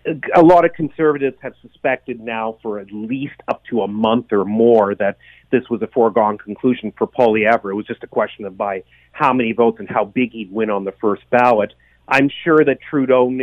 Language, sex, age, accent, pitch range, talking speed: English, male, 40-59, American, 115-155 Hz, 215 wpm